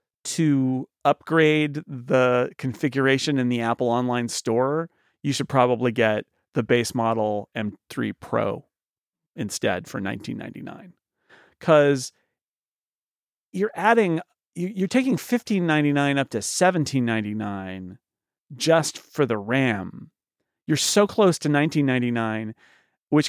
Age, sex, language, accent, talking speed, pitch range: 40-59, male, English, American, 105 wpm, 120-155 Hz